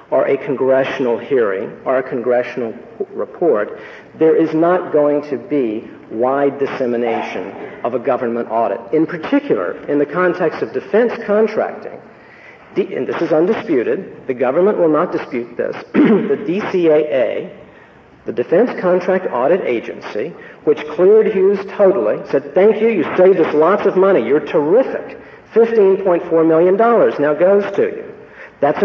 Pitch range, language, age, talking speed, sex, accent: 140-230 Hz, English, 50-69, 140 wpm, male, American